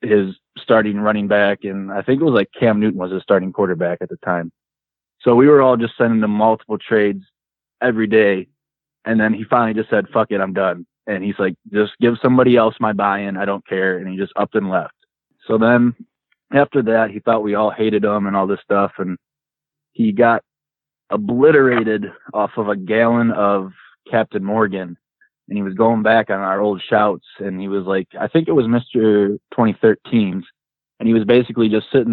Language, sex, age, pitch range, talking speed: English, male, 20-39, 100-125 Hz, 200 wpm